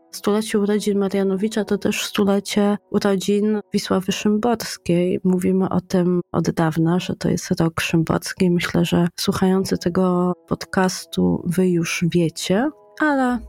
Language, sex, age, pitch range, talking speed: Polish, female, 20-39, 185-215 Hz, 125 wpm